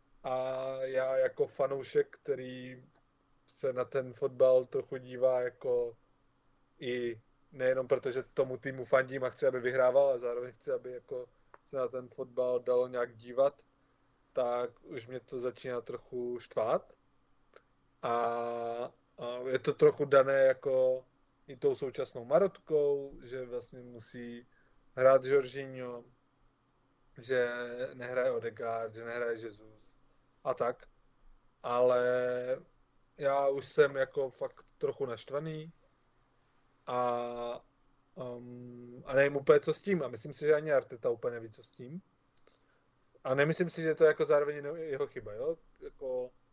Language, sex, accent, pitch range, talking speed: Czech, male, native, 125-185 Hz, 135 wpm